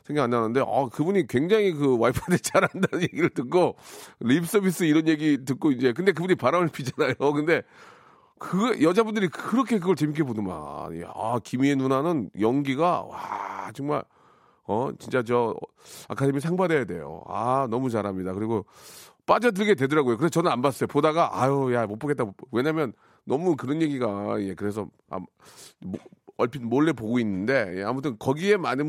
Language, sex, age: Korean, male, 40-59